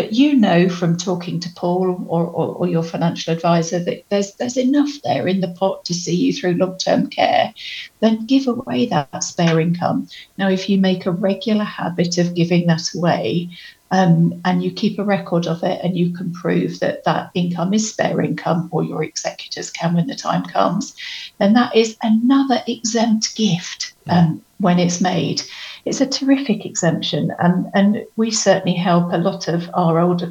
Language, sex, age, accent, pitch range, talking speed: English, female, 50-69, British, 170-200 Hz, 190 wpm